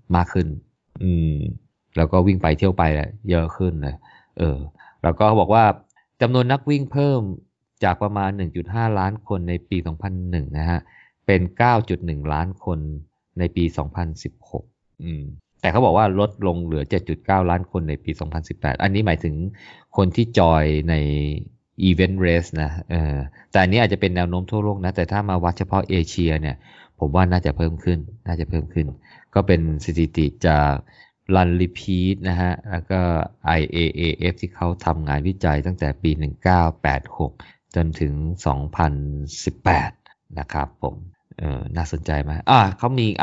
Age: 20-39